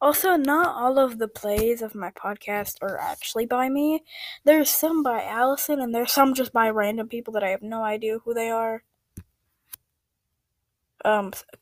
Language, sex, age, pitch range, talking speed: English, female, 10-29, 235-295 Hz, 170 wpm